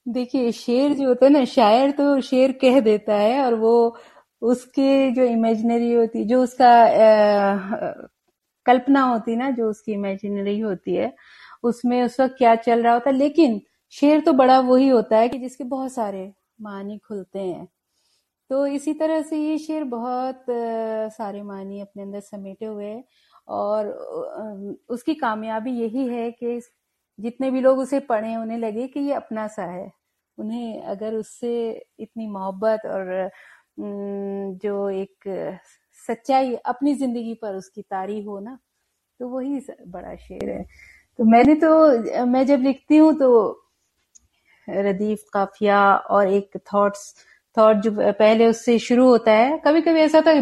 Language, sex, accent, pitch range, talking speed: Hindi, female, native, 210-265 Hz, 155 wpm